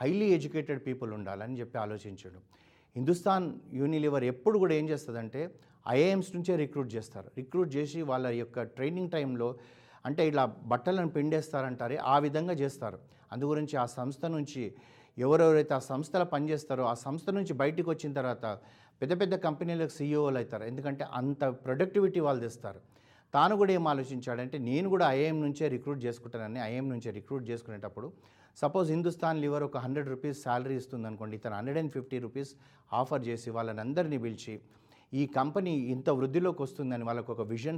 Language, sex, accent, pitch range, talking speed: Telugu, male, native, 120-155 Hz, 150 wpm